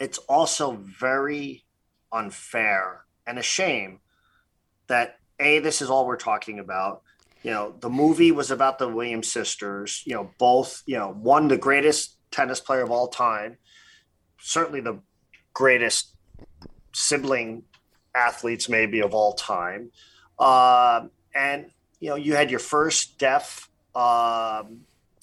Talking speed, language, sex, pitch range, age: 135 wpm, English, male, 115-150 Hz, 40-59